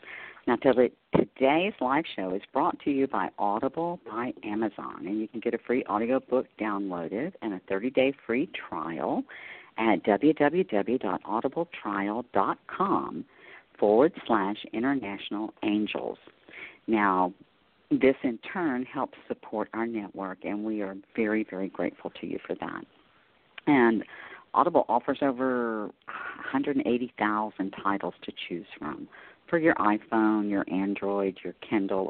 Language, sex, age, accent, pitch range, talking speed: English, female, 50-69, American, 100-130 Hz, 120 wpm